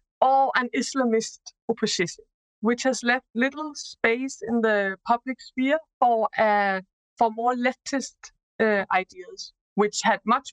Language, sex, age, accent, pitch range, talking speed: Hebrew, female, 50-69, Danish, 205-260 Hz, 135 wpm